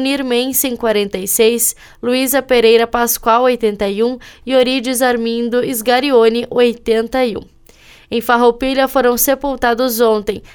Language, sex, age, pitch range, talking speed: Portuguese, female, 10-29, 230-255 Hz, 100 wpm